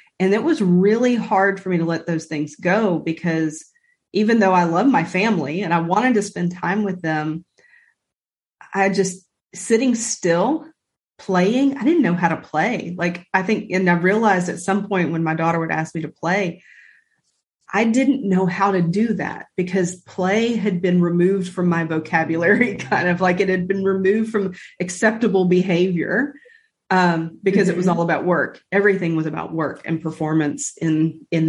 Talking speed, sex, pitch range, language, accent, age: 180 wpm, female, 170-205 Hz, English, American, 30-49